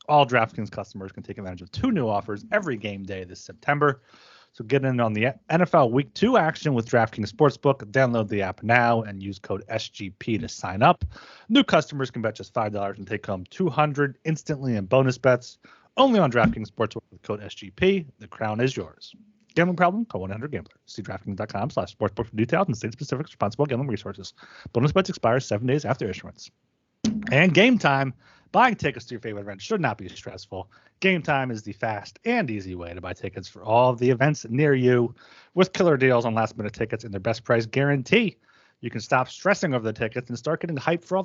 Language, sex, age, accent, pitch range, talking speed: English, male, 30-49, American, 110-155 Hz, 205 wpm